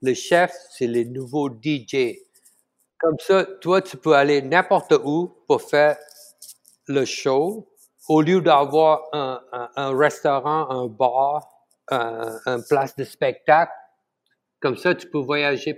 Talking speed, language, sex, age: 135 wpm, French, male, 60-79